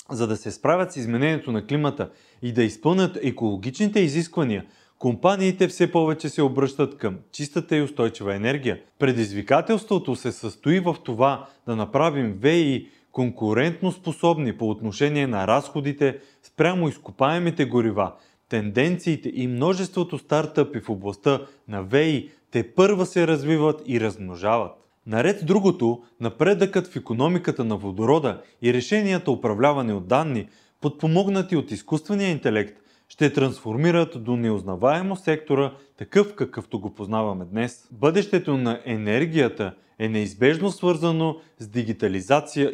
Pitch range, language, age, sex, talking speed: 115-165 Hz, Bulgarian, 30-49, male, 125 wpm